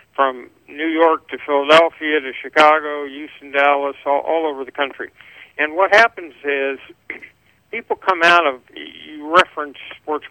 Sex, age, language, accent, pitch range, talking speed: male, 50-69, English, American, 140-160 Hz, 145 wpm